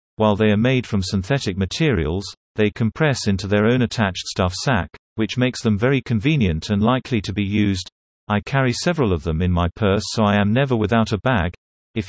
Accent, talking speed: British, 205 wpm